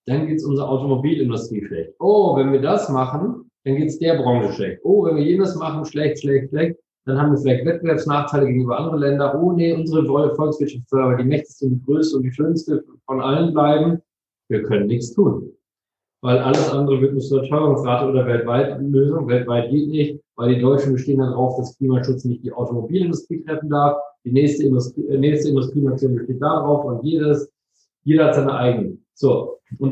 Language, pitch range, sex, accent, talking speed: German, 130-155 Hz, male, German, 190 wpm